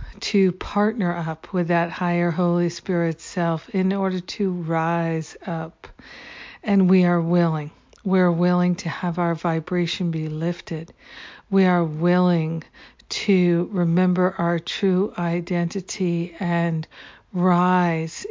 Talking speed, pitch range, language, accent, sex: 120 wpm, 170-190 Hz, English, American, female